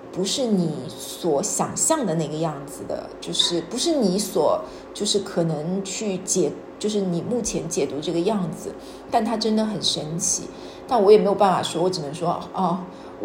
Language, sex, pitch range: Chinese, female, 165-200 Hz